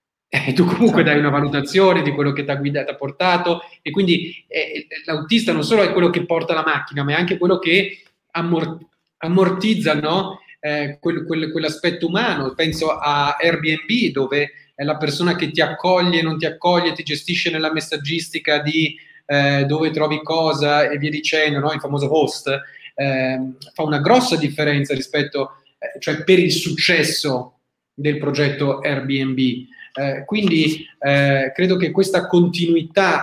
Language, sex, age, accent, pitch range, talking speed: Italian, male, 30-49, native, 145-175 Hz, 150 wpm